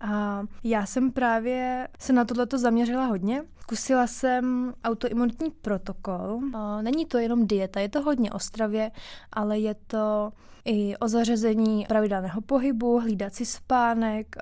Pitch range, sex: 210-235 Hz, female